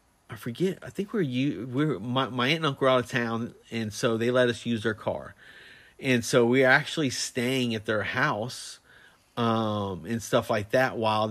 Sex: male